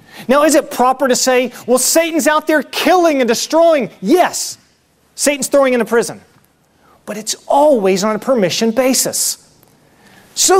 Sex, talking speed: male, 155 wpm